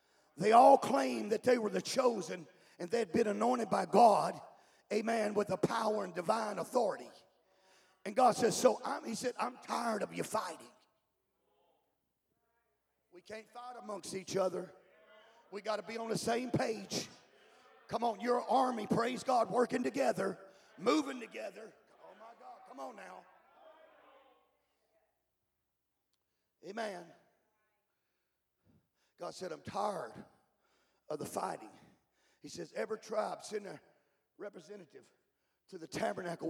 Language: English